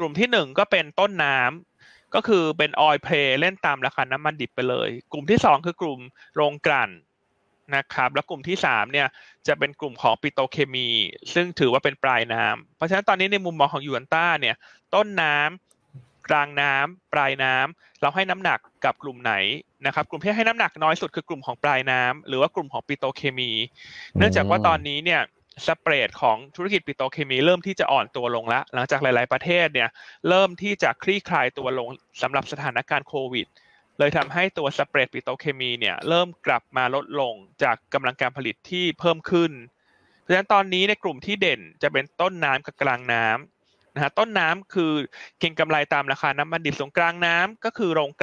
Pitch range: 130-175 Hz